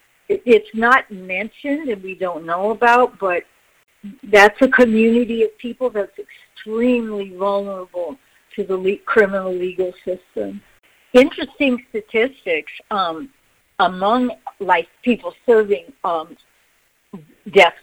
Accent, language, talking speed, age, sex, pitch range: American, English, 105 wpm, 60-79, female, 190-245 Hz